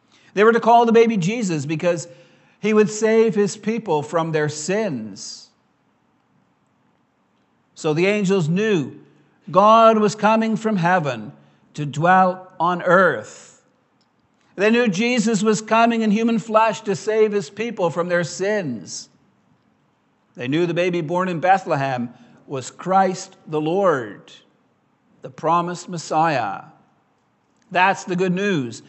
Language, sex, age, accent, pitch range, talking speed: English, male, 60-79, American, 170-215 Hz, 130 wpm